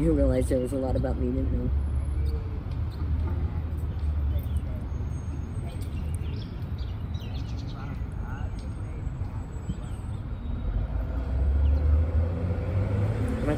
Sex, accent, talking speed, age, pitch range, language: female, American, 50 wpm, 40-59, 90-110 Hz, English